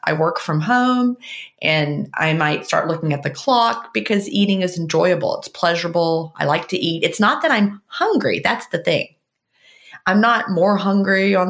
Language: English